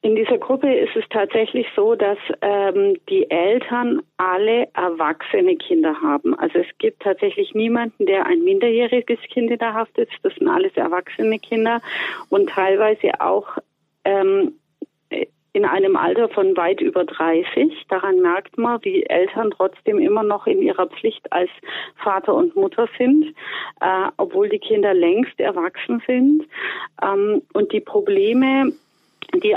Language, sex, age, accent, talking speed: German, female, 40-59, German, 145 wpm